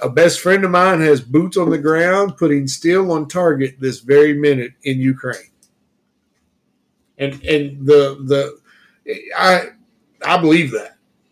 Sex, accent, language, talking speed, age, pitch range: male, American, English, 145 wpm, 50-69, 140-200 Hz